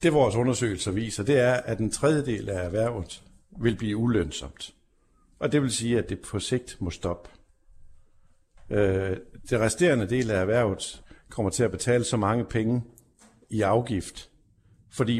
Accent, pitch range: native, 95-120 Hz